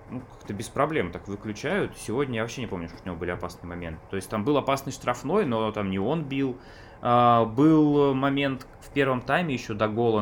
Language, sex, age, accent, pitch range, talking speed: Russian, male, 20-39, native, 95-120 Hz, 210 wpm